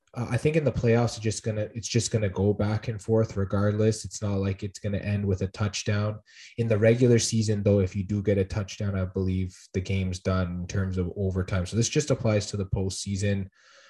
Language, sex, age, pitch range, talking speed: English, male, 20-39, 100-115 Hz, 225 wpm